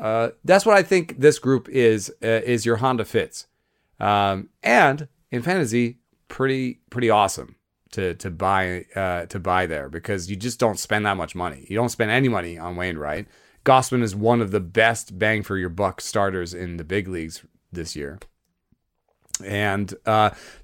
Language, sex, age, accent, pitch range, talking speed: English, male, 30-49, American, 100-125 Hz, 180 wpm